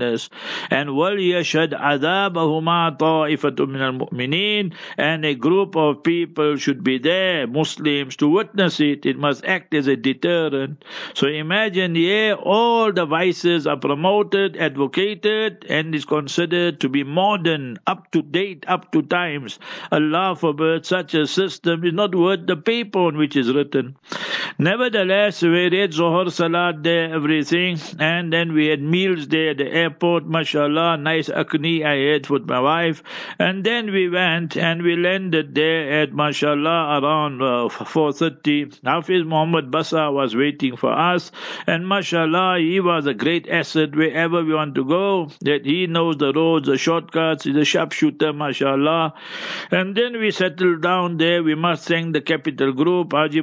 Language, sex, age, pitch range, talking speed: English, male, 60-79, 150-175 Hz, 145 wpm